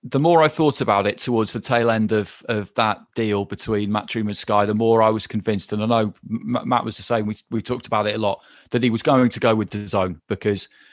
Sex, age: male, 30-49